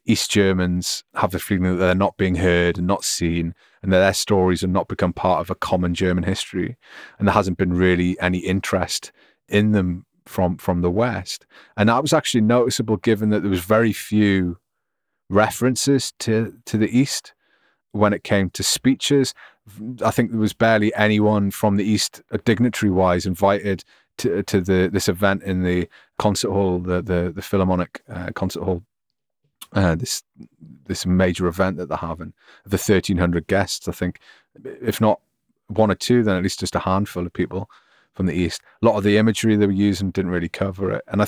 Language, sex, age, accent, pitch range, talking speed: English, male, 30-49, British, 90-105 Hz, 190 wpm